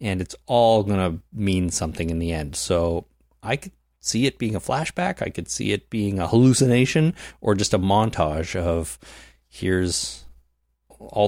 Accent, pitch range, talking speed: American, 85-125 Hz, 170 wpm